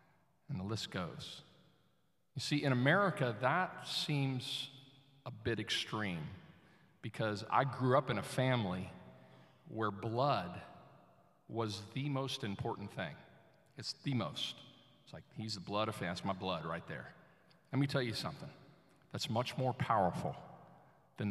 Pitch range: 110-150 Hz